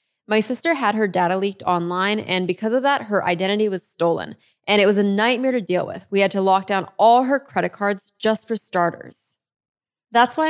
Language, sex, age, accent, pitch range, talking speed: English, female, 20-39, American, 190-245 Hz, 210 wpm